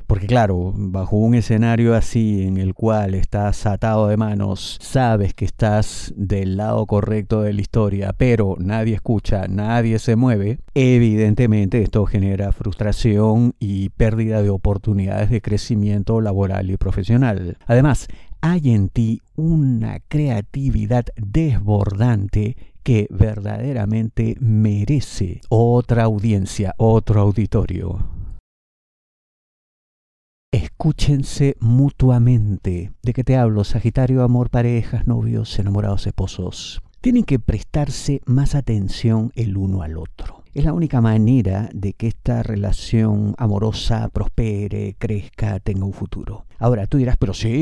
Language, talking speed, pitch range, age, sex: Spanish, 120 wpm, 100-120 Hz, 50-69, male